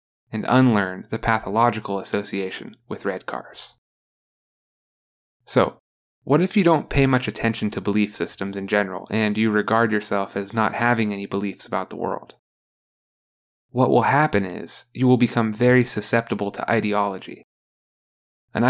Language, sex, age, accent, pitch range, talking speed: English, male, 20-39, American, 105-120 Hz, 145 wpm